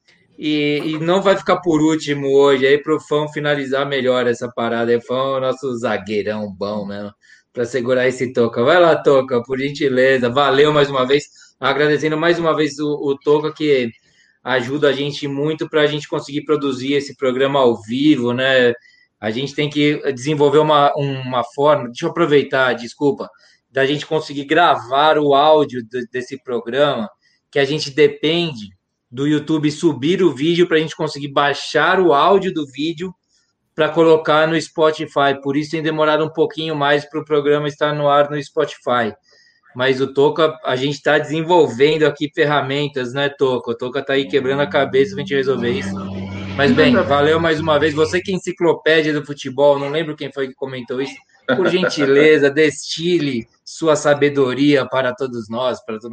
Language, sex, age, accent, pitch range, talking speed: Portuguese, male, 20-39, Brazilian, 130-155 Hz, 175 wpm